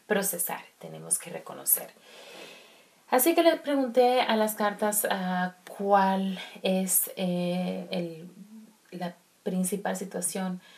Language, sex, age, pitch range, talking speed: Spanish, female, 30-49, 175-205 Hz, 105 wpm